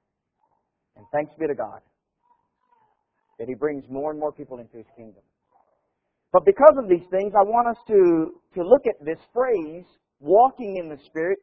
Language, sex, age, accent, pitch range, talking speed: English, male, 50-69, American, 165-245 Hz, 170 wpm